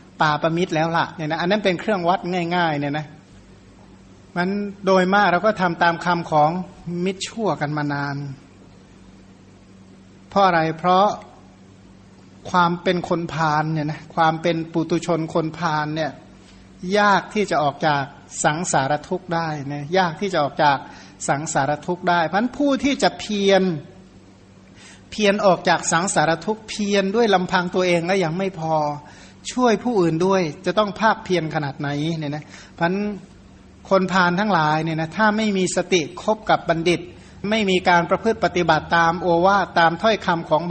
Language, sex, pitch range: Thai, male, 150-190 Hz